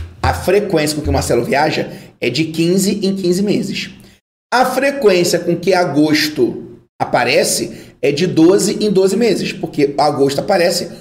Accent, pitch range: Brazilian, 160-200 Hz